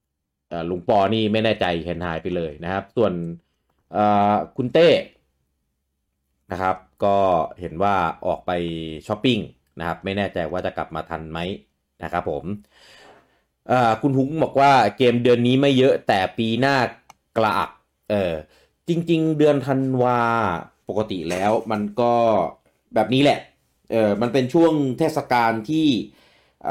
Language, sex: English, male